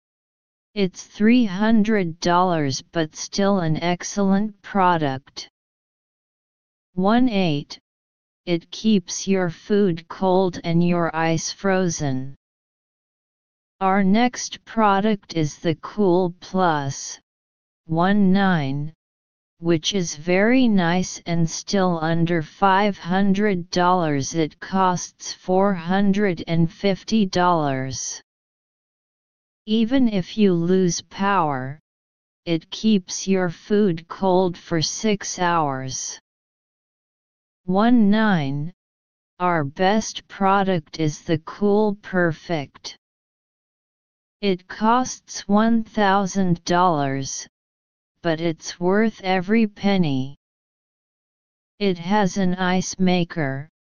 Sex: female